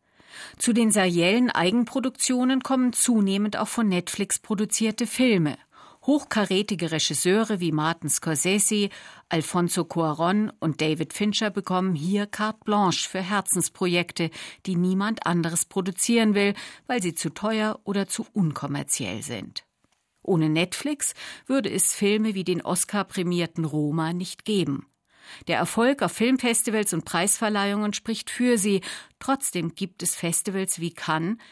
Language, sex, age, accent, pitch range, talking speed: German, female, 50-69, German, 170-210 Hz, 125 wpm